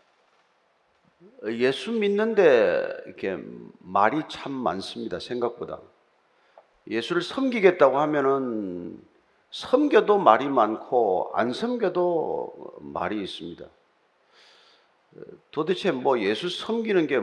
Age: 40-59